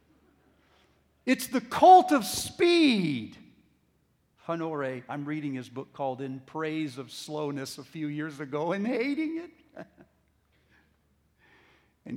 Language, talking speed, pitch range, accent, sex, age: English, 115 wpm, 120-200 Hz, American, male, 50-69